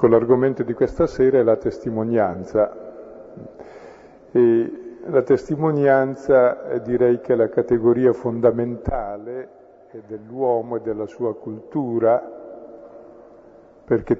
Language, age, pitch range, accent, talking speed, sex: Italian, 50-69, 115-140 Hz, native, 95 wpm, male